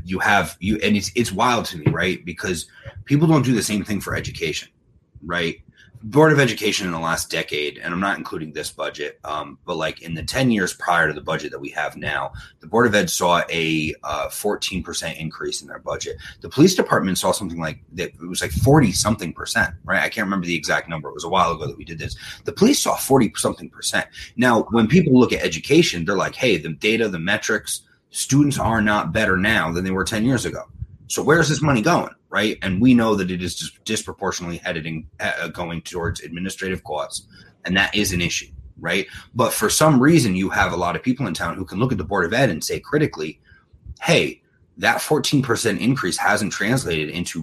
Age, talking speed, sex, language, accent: 30-49, 220 wpm, male, English, American